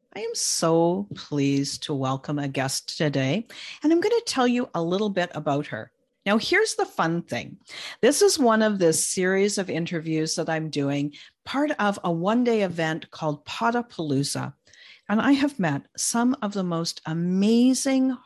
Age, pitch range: 50-69, 160-245 Hz